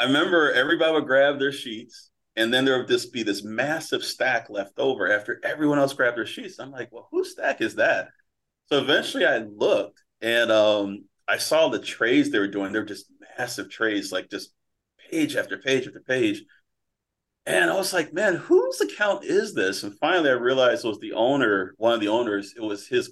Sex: male